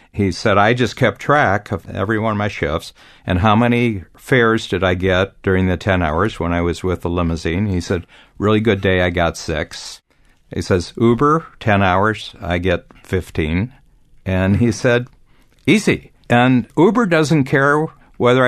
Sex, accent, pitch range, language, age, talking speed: male, American, 95-120 Hz, English, 60-79, 175 wpm